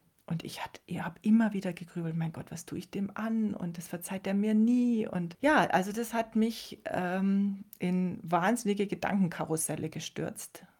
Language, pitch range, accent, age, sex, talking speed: German, 160-205 Hz, German, 40-59, female, 170 wpm